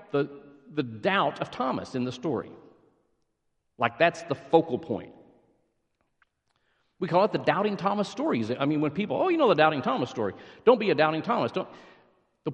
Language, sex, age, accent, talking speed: English, male, 50-69, American, 180 wpm